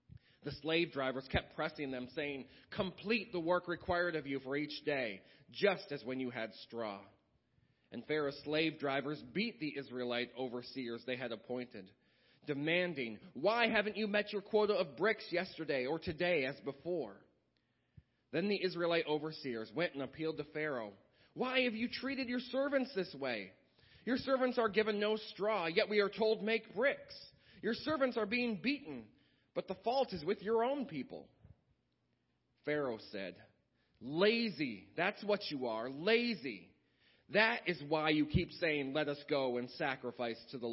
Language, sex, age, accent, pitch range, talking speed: English, male, 40-59, American, 125-195 Hz, 160 wpm